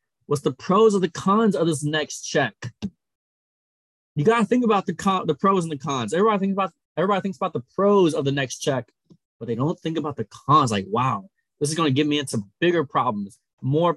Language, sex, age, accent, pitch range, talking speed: English, male, 20-39, American, 120-165 Hz, 220 wpm